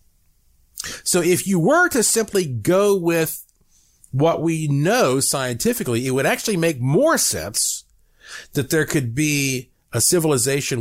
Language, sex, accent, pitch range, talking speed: English, male, American, 120-175 Hz, 135 wpm